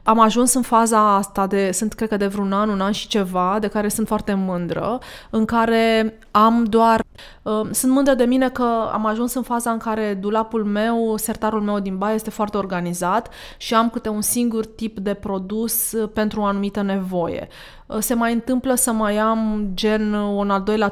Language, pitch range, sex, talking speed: Romanian, 200-230 Hz, female, 190 wpm